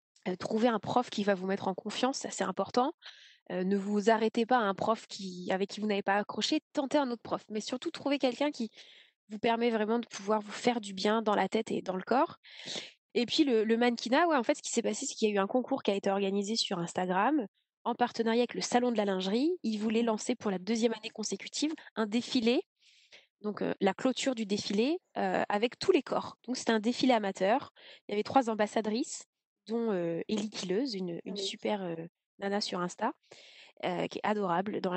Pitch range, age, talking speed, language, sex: 200-240 Hz, 20-39, 225 wpm, French, female